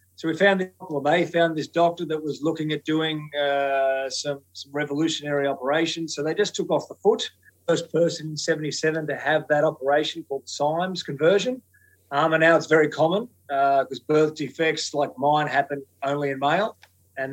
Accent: Australian